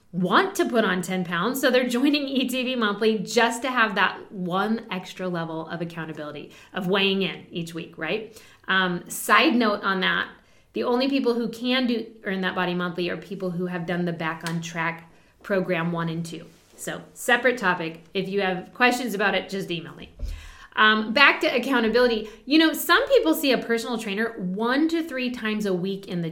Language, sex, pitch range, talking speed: English, female, 185-275 Hz, 195 wpm